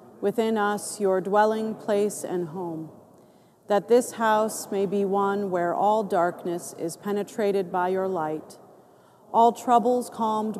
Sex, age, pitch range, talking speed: female, 40-59, 185-220 Hz, 135 wpm